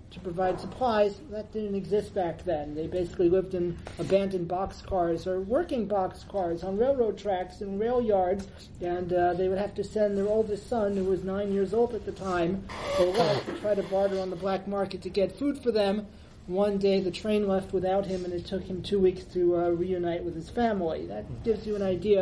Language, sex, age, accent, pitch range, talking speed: English, male, 40-59, American, 180-220 Hz, 215 wpm